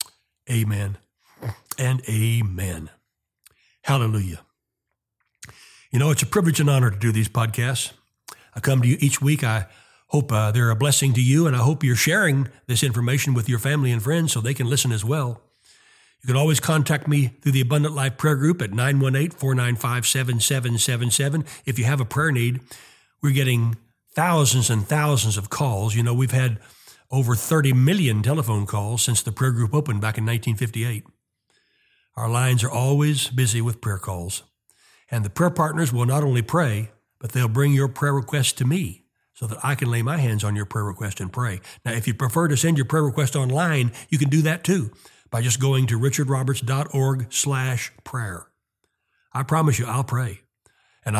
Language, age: English, 60-79